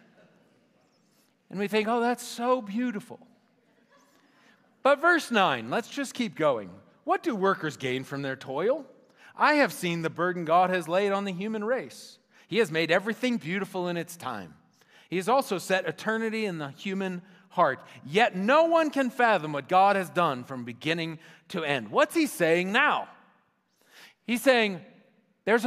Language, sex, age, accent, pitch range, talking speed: English, male, 40-59, American, 190-280 Hz, 165 wpm